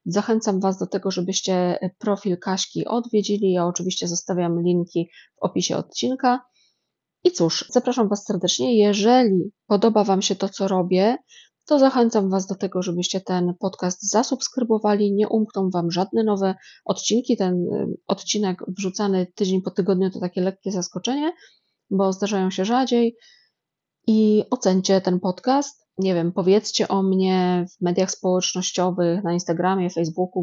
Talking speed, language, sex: 140 wpm, Polish, female